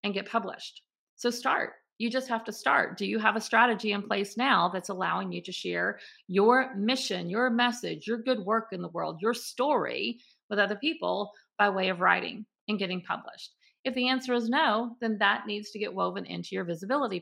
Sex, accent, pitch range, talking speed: female, American, 190-240 Hz, 205 wpm